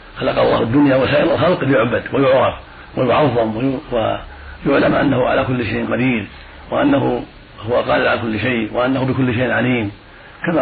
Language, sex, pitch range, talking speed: Arabic, male, 110-135 Hz, 140 wpm